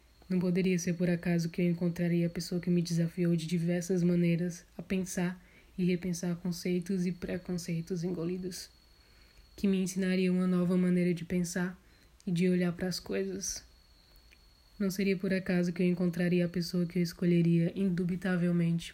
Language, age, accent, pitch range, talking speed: Portuguese, 20-39, Brazilian, 175-190 Hz, 160 wpm